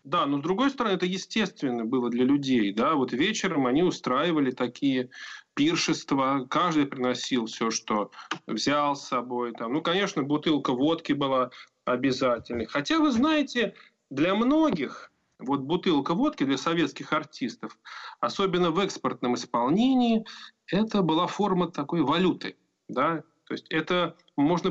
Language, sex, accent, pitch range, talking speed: Russian, male, native, 135-220 Hz, 135 wpm